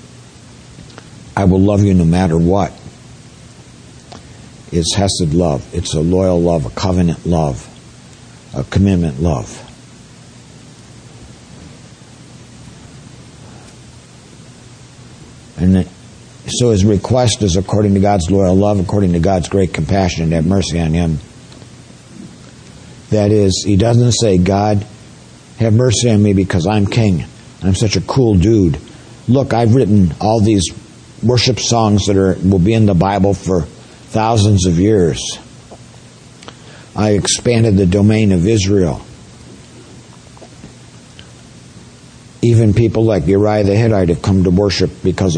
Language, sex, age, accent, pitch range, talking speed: English, male, 60-79, American, 90-110 Hz, 125 wpm